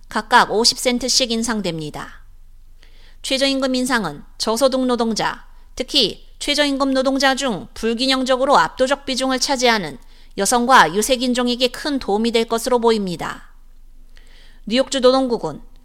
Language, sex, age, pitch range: Korean, female, 30-49, 225-260 Hz